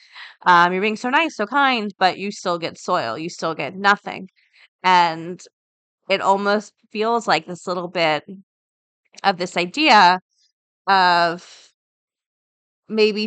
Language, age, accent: English, 20-39, American